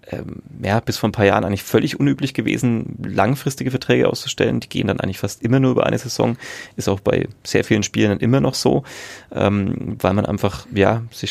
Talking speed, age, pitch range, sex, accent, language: 205 wpm, 30-49, 100-120 Hz, male, German, German